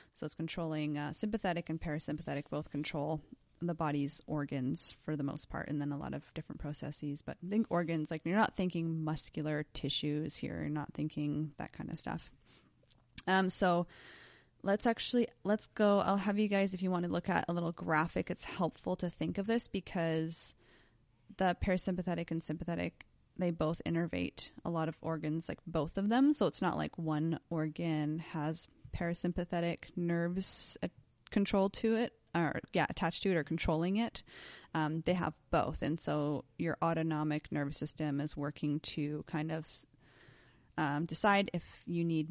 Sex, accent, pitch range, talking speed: female, American, 150-185 Hz, 175 wpm